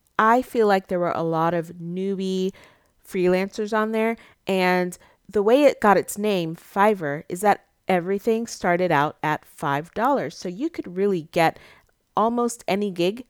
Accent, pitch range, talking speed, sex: American, 160-205 Hz, 160 wpm, female